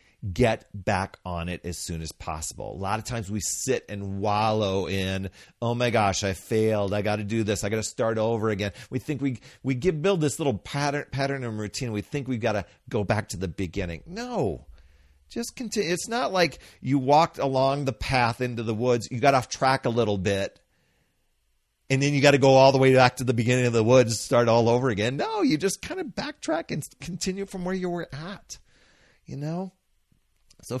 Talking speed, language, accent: 220 wpm, English, American